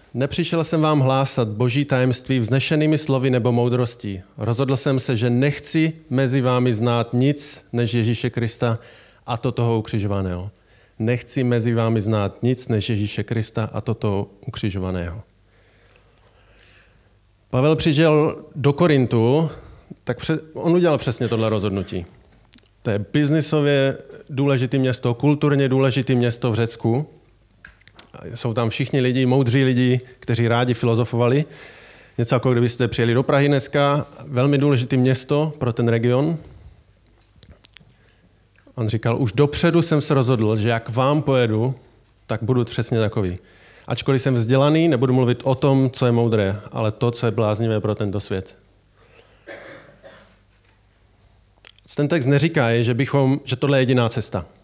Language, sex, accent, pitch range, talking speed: Czech, male, native, 110-135 Hz, 135 wpm